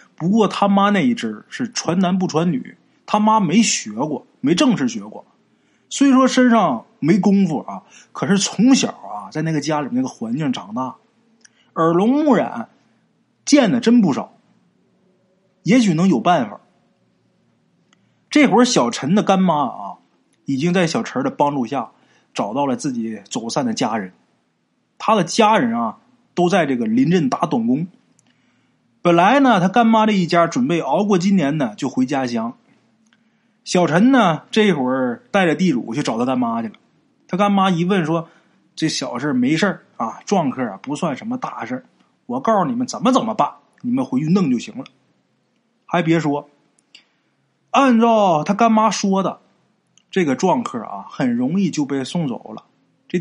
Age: 20-39